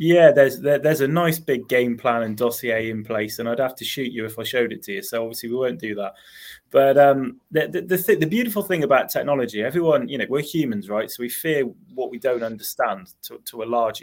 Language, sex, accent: English, male, British